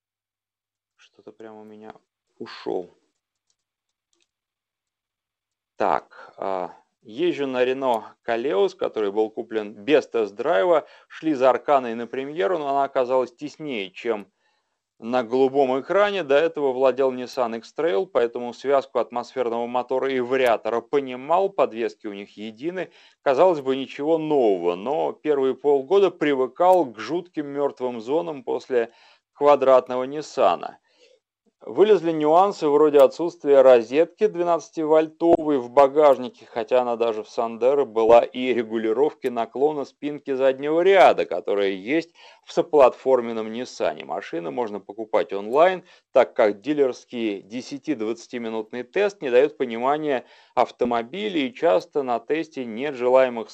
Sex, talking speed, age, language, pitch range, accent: male, 120 wpm, 30-49, Russian, 115-165 Hz, native